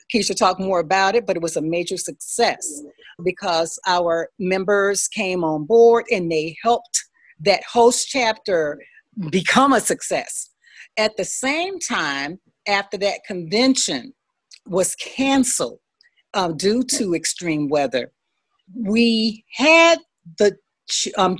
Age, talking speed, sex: 40-59, 125 wpm, female